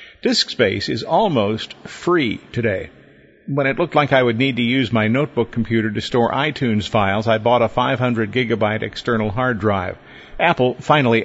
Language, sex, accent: English, male, American